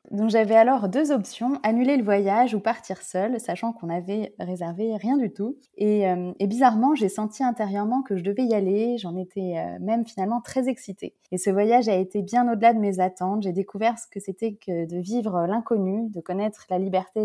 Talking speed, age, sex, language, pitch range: 205 wpm, 20-39, female, French, 185-225 Hz